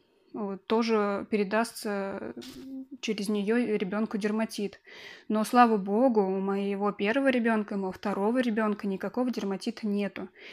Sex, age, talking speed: female, 20-39, 115 wpm